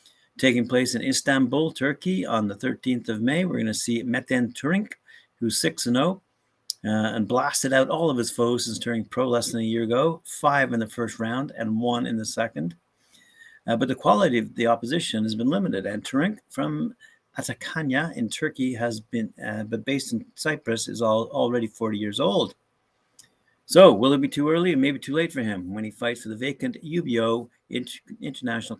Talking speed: 195 wpm